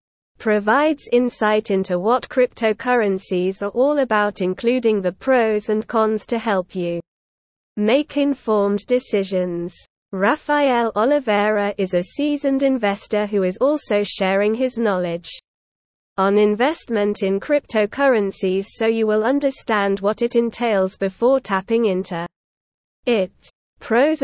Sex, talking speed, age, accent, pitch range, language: female, 115 wpm, 30-49, British, 195-250 Hz, English